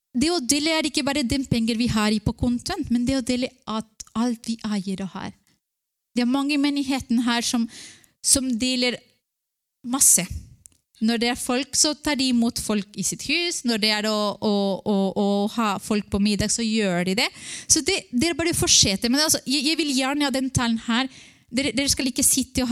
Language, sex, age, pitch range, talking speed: English, female, 20-39, 210-270 Hz, 230 wpm